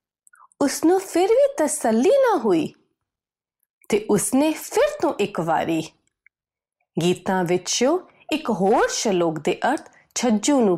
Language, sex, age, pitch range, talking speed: Punjabi, female, 30-49, 180-270 Hz, 110 wpm